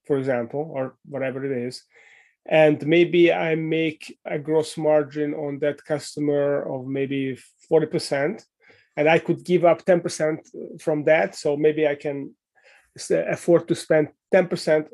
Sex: male